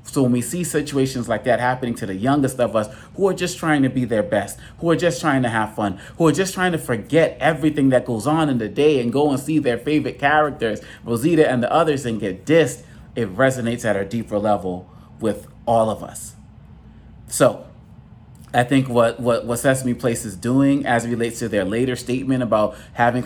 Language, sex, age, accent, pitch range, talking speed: English, male, 30-49, American, 115-135 Hz, 215 wpm